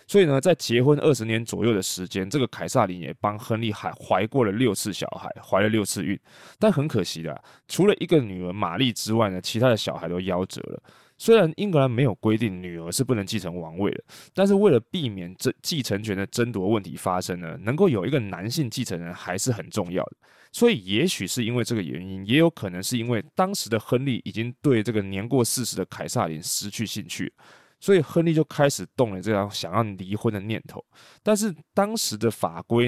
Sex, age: male, 20-39